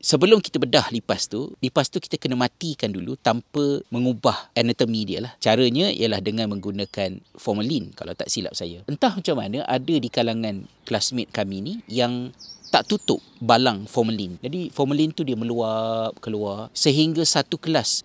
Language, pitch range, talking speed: Malay, 115-150 Hz, 160 wpm